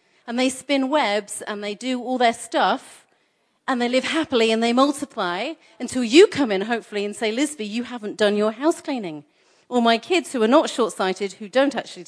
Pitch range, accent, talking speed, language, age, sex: 225-295 Hz, British, 205 wpm, English, 40-59, female